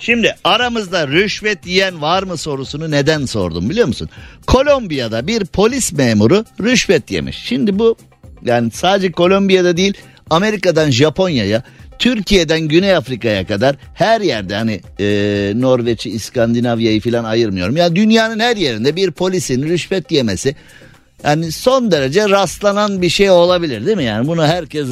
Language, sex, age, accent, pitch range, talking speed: Turkish, male, 50-69, native, 115-185 Hz, 140 wpm